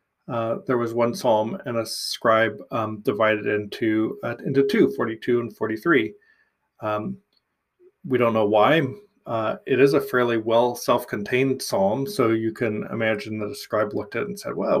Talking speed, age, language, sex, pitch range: 175 wpm, 30-49, English, male, 115-150 Hz